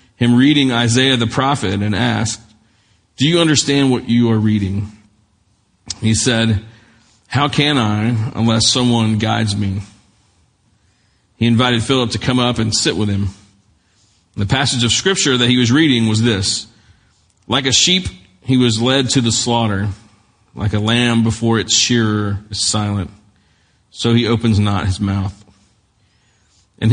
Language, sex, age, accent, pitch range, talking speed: English, male, 40-59, American, 105-120 Hz, 150 wpm